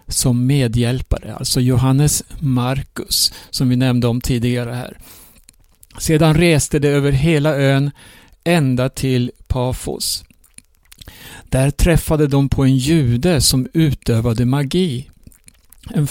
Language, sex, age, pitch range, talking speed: Swedish, male, 60-79, 125-155 Hz, 110 wpm